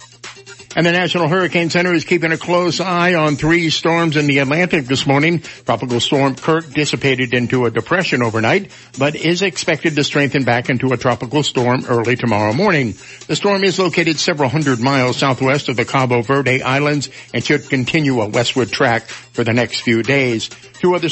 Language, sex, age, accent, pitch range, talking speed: English, male, 60-79, American, 130-165 Hz, 185 wpm